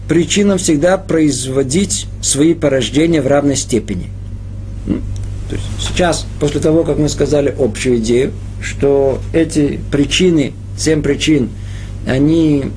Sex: male